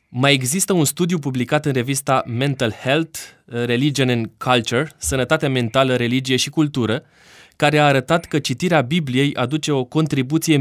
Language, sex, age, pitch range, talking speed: Romanian, male, 20-39, 115-145 Hz, 145 wpm